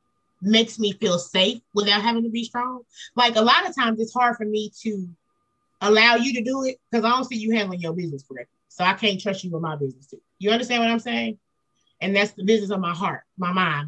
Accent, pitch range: American, 175-230 Hz